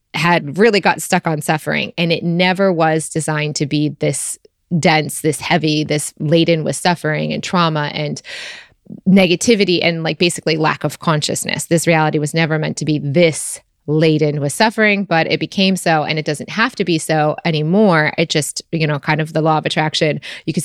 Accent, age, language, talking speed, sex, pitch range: American, 20-39, English, 190 wpm, female, 150-180 Hz